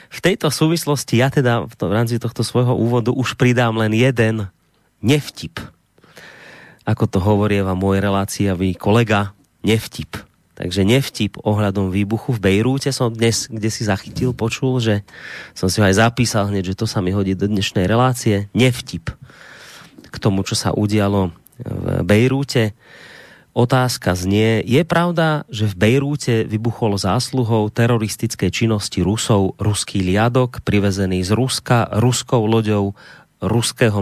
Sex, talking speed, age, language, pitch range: male, 140 wpm, 30-49, Slovak, 100-125 Hz